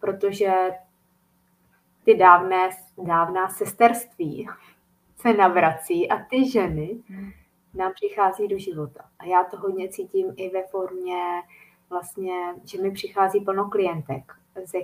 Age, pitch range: 20-39, 185-215 Hz